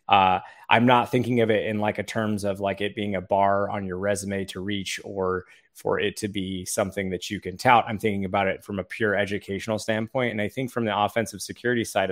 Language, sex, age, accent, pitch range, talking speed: English, male, 20-39, American, 100-125 Hz, 240 wpm